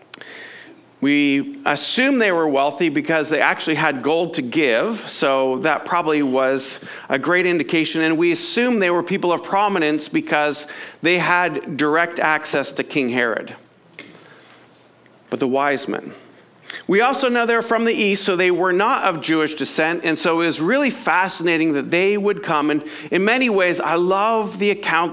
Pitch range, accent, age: 150-195 Hz, American, 50-69